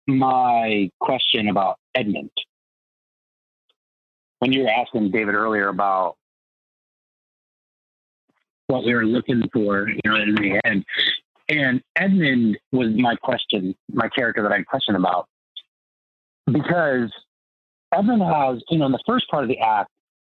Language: English